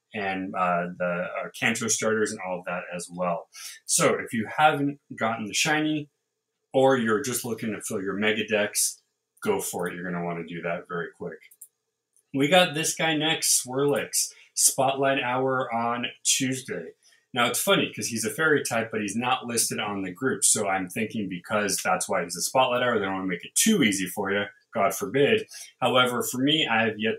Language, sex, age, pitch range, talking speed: English, male, 20-39, 110-155 Hz, 205 wpm